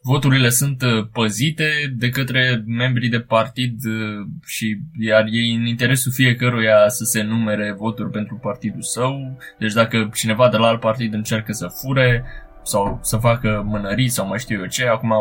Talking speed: 160 wpm